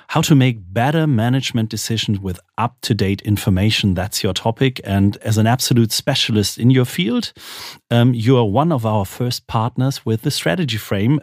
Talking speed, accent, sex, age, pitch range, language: 170 wpm, German, male, 40-59, 105-140 Hz, English